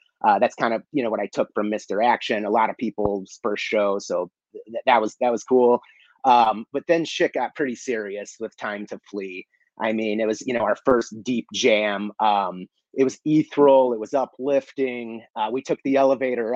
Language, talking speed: English, 205 wpm